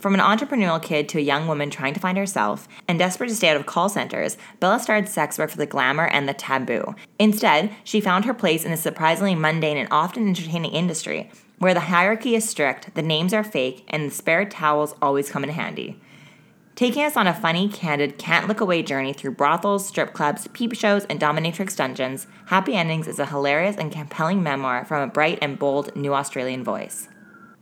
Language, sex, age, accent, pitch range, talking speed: English, female, 20-39, American, 140-195 Hz, 205 wpm